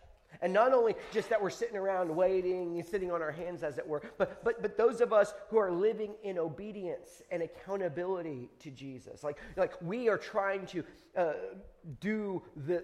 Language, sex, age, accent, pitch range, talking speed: English, male, 40-59, American, 140-190 Hz, 190 wpm